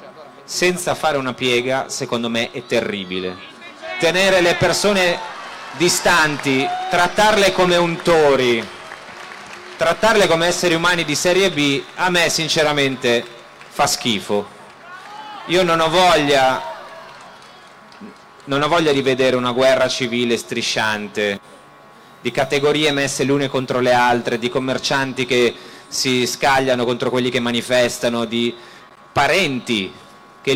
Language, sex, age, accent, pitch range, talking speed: Italian, male, 30-49, native, 125-170 Hz, 115 wpm